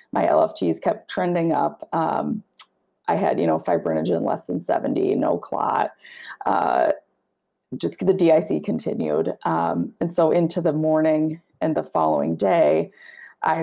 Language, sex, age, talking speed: English, female, 30-49, 140 wpm